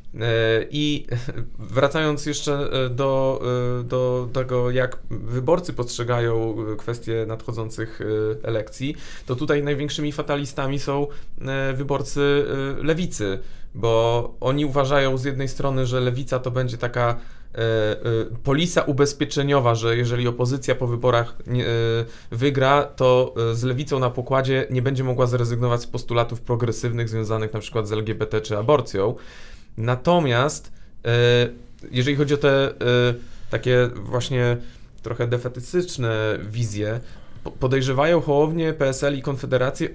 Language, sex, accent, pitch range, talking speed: Polish, male, native, 120-145 Hz, 105 wpm